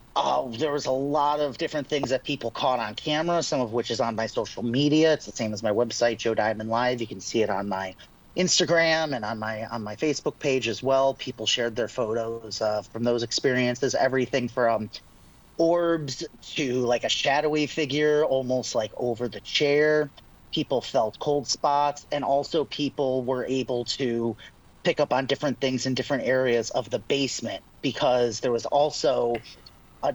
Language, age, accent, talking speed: English, 30-49, American, 185 wpm